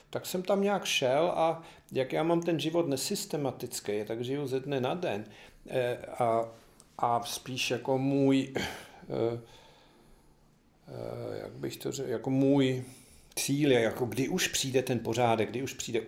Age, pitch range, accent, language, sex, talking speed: 50-69, 110-150 Hz, native, Czech, male, 155 wpm